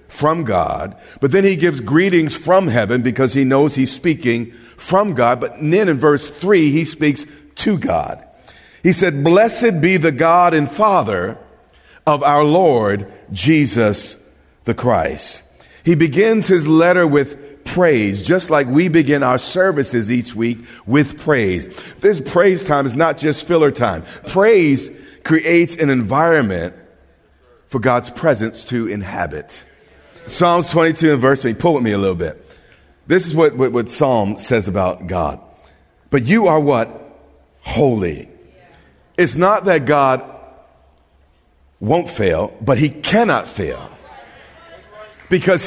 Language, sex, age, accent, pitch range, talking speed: English, male, 50-69, American, 120-175 Hz, 140 wpm